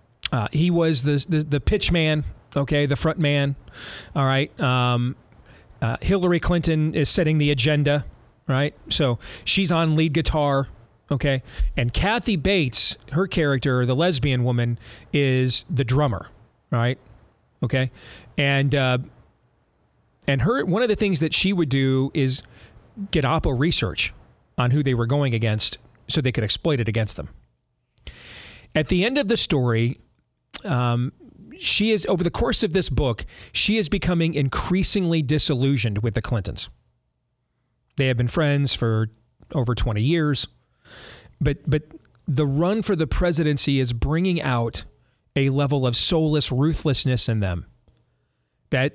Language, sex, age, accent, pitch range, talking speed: English, male, 40-59, American, 120-160 Hz, 145 wpm